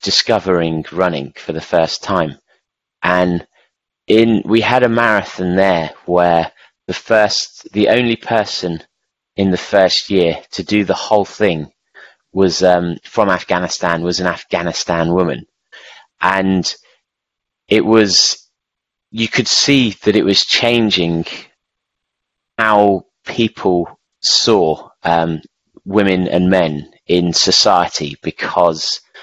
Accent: British